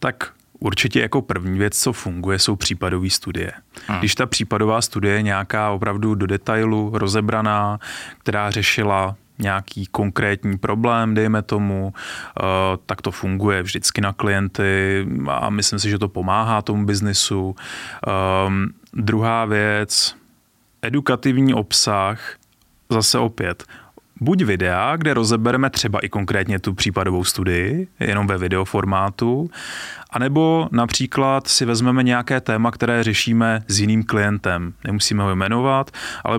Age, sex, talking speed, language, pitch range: 20-39, male, 125 wpm, Czech, 100-120 Hz